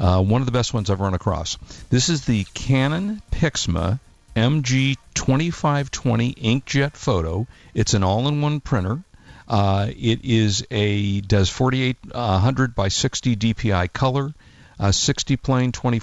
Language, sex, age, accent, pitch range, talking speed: English, male, 50-69, American, 100-130 Hz, 135 wpm